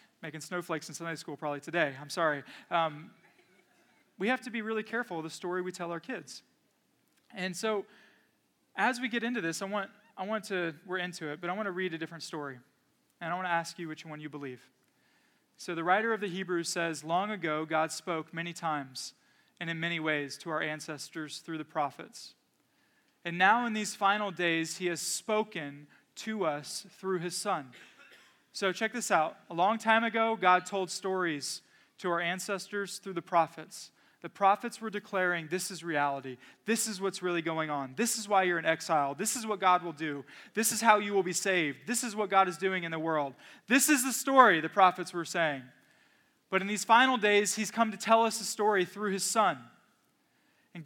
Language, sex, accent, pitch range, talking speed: English, male, American, 165-215 Hz, 205 wpm